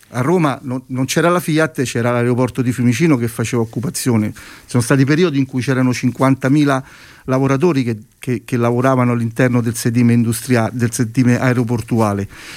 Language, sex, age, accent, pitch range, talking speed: Italian, male, 50-69, native, 120-150 Hz, 150 wpm